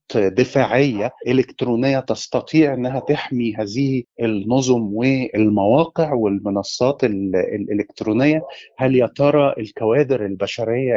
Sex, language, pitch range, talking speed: male, Arabic, 120-155 Hz, 80 wpm